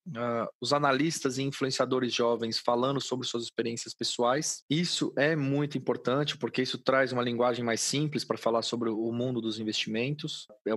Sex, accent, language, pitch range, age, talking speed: male, Brazilian, Portuguese, 115-145 Hz, 20-39, 165 wpm